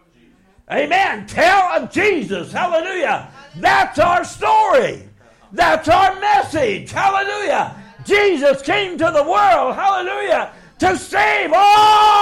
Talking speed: 105 wpm